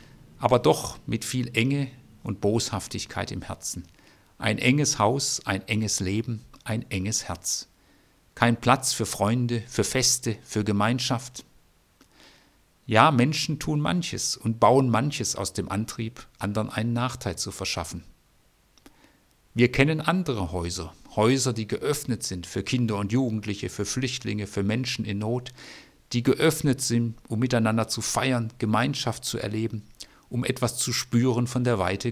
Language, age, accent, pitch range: German, 50-69, German, 105-130 Hz